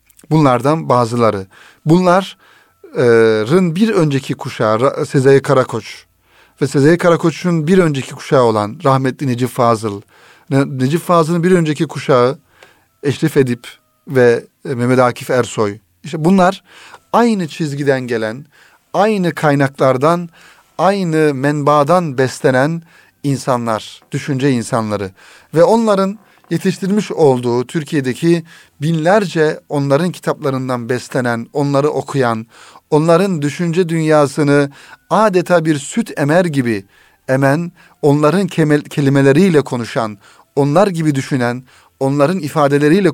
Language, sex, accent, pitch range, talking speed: Turkish, male, native, 125-160 Hz, 100 wpm